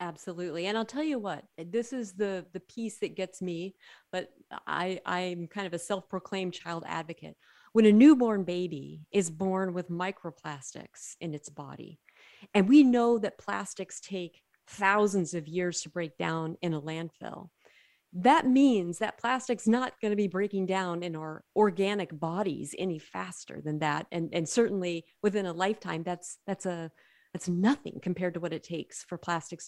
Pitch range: 170-215 Hz